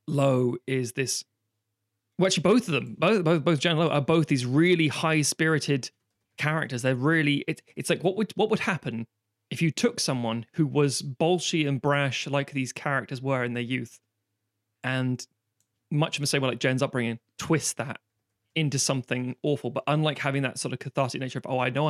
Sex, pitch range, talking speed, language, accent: male, 115-150 Hz, 195 wpm, English, British